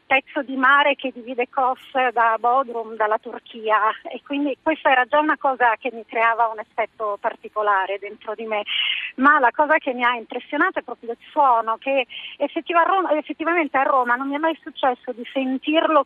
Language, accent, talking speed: Italian, native, 180 wpm